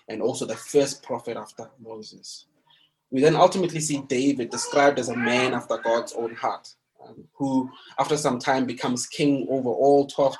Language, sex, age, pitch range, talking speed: English, male, 20-39, 120-145 Hz, 175 wpm